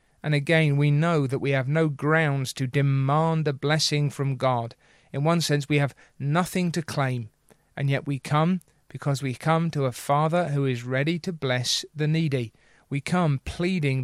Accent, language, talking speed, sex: British, English, 185 wpm, male